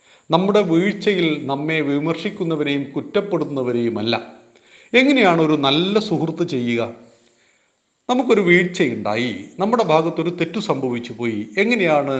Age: 40-59